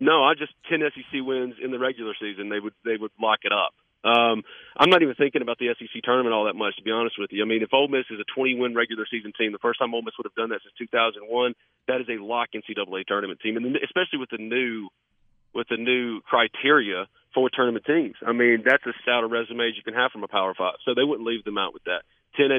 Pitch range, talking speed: 115-135 Hz, 260 wpm